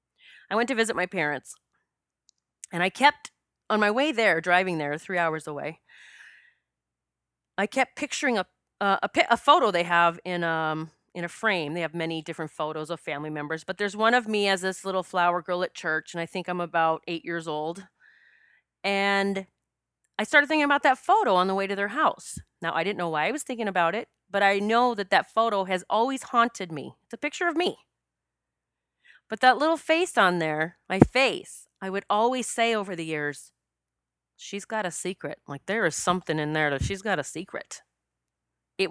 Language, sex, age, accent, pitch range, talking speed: English, female, 30-49, American, 160-220 Hz, 200 wpm